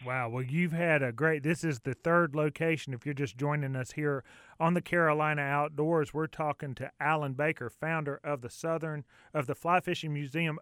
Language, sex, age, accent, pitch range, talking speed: English, male, 30-49, American, 140-165 Hz, 200 wpm